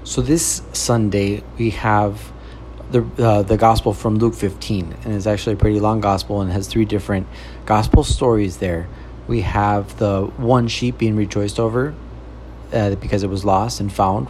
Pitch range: 100-115 Hz